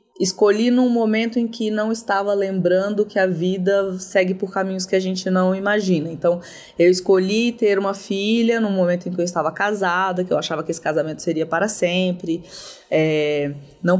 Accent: Brazilian